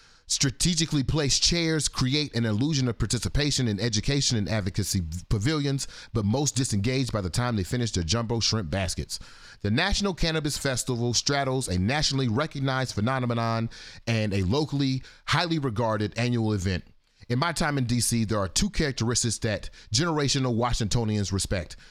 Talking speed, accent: 150 wpm, American